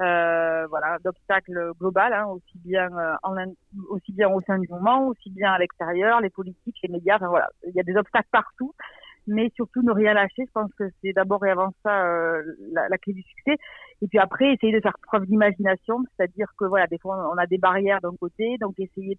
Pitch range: 180-220 Hz